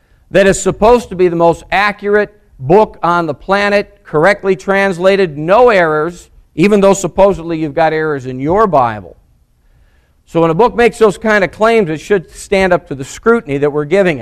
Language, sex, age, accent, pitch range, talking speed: English, male, 50-69, American, 155-195 Hz, 185 wpm